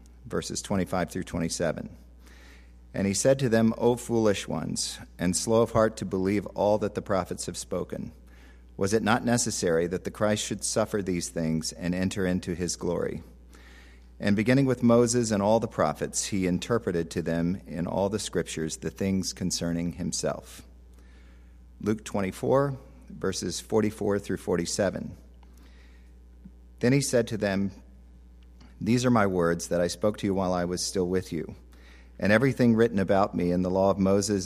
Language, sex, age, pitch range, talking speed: English, male, 50-69, 65-105 Hz, 165 wpm